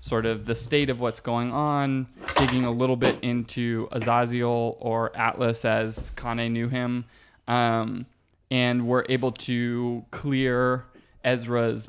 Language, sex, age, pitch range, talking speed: English, male, 20-39, 115-125 Hz, 135 wpm